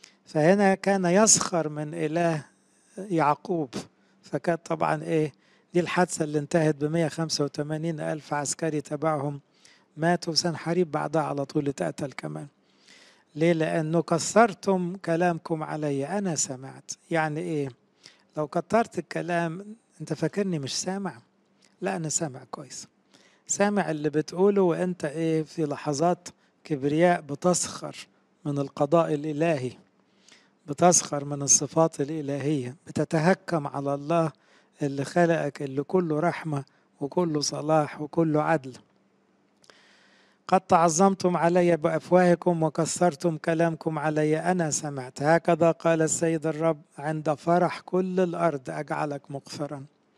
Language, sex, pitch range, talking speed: English, male, 150-175 Hz, 110 wpm